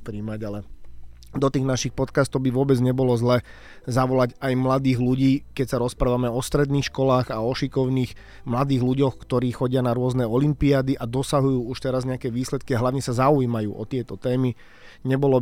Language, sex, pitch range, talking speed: Slovak, male, 120-135 Hz, 165 wpm